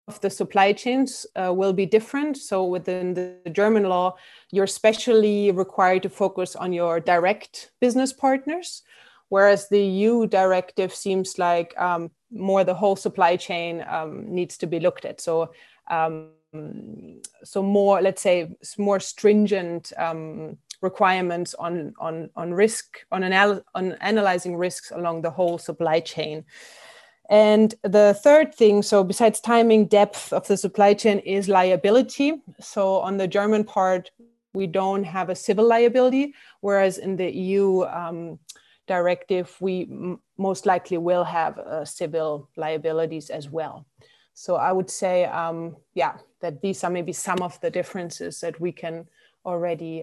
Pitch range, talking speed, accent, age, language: 175-205 Hz, 150 wpm, German, 20-39, English